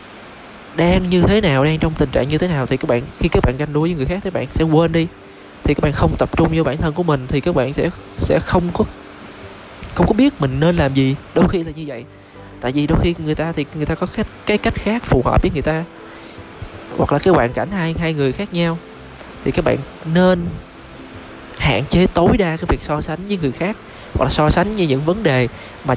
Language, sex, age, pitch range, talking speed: Vietnamese, male, 20-39, 120-165 Hz, 255 wpm